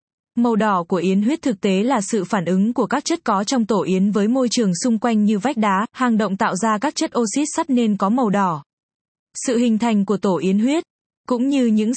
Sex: female